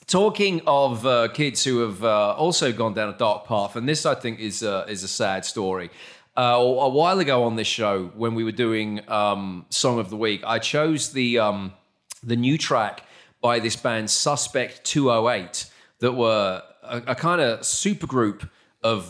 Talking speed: 190 wpm